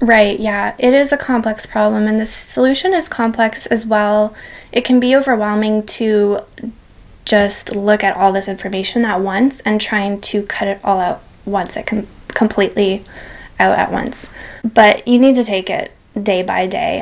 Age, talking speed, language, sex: 10-29, 180 wpm, English, female